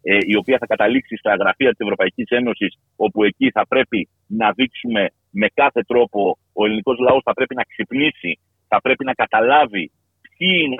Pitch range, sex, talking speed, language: 110-155 Hz, male, 170 wpm, Greek